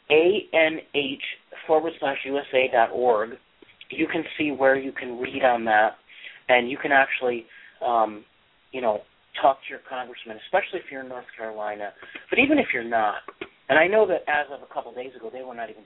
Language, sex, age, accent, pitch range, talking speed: English, male, 40-59, American, 120-145 Hz, 195 wpm